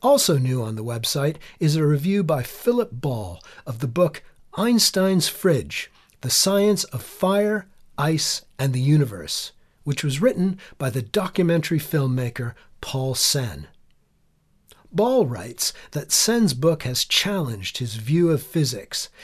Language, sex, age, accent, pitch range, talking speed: English, male, 40-59, American, 120-165 Hz, 135 wpm